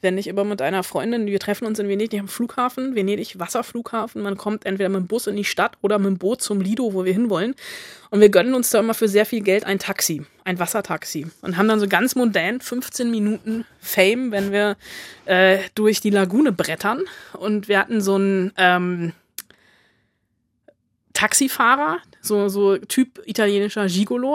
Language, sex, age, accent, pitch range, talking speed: German, female, 20-39, German, 195-230 Hz, 180 wpm